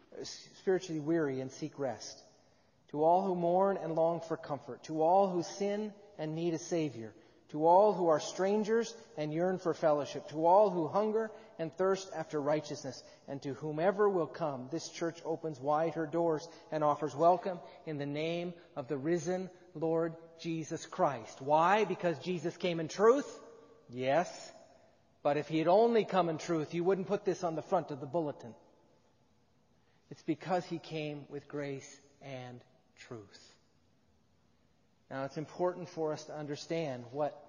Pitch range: 145-175 Hz